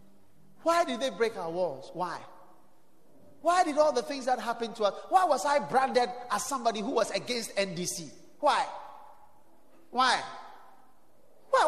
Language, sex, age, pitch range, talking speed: English, male, 30-49, 250-340 Hz, 150 wpm